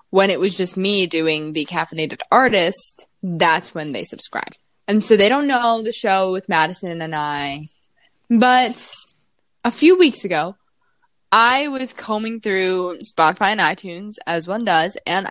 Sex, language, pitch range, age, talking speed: female, English, 170-245 Hz, 10-29, 155 wpm